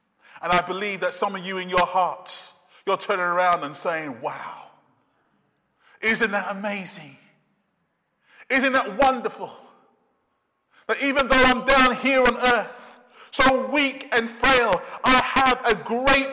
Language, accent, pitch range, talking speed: English, British, 160-245 Hz, 140 wpm